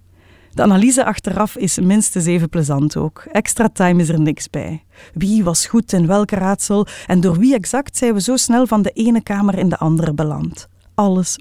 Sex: female